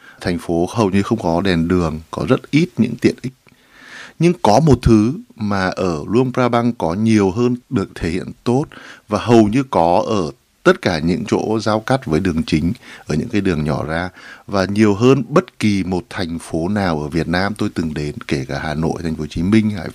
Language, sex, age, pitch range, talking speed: Vietnamese, male, 60-79, 90-120 Hz, 225 wpm